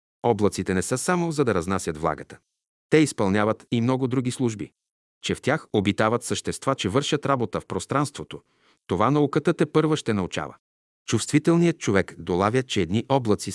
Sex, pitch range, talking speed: male, 95-130 Hz, 160 wpm